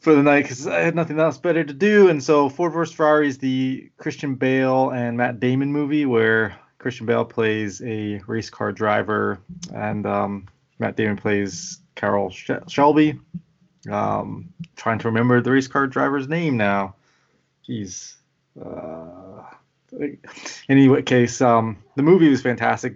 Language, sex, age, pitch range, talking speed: English, male, 20-39, 110-140 Hz, 155 wpm